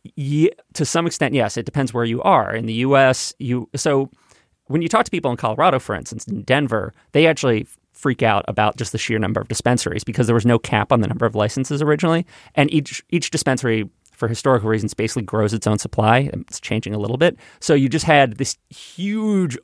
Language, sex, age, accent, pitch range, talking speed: English, male, 30-49, American, 110-140 Hz, 215 wpm